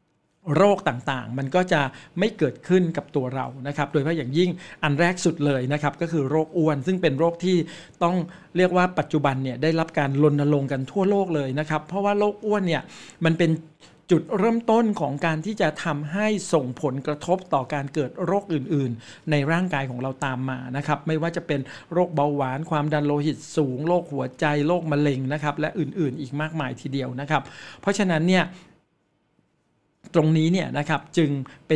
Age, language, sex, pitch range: 60-79, Thai, male, 145-180 Hz